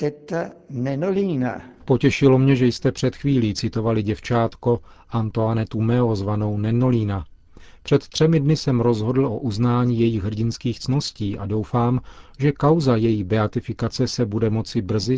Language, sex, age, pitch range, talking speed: Czech, male, 40-59, 105-125 Hz, 125 wpm